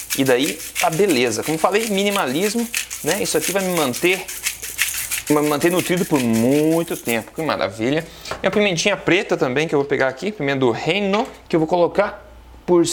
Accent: Brazilian